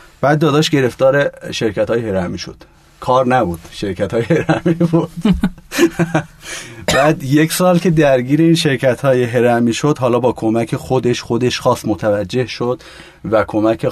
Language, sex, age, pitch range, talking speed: Persian, male, 30-49, 110-145 Hz, 140 wpm